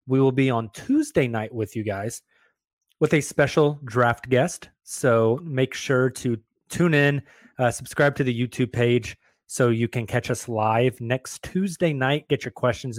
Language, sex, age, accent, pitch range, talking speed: English, male, 20-39, American, 115-145 Hz, 175 wpm